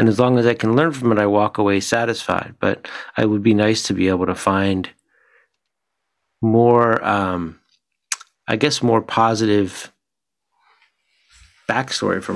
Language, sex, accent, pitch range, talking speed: English, male, American, 90-115 Hz, 150 wpm